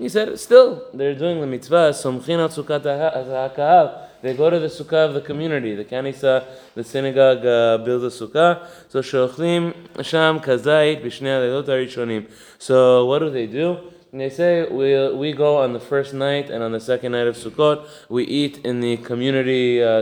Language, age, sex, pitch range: English, 20-39, male, 115-140 Hz